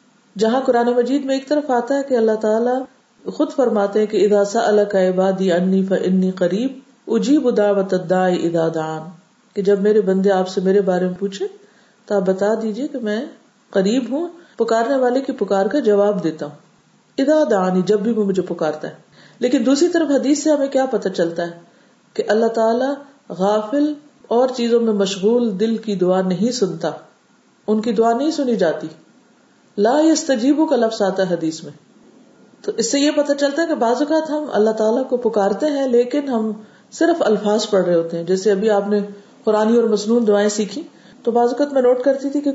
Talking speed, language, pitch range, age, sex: 165 wpm, Urdu, 200-265 Hz, 40-59, female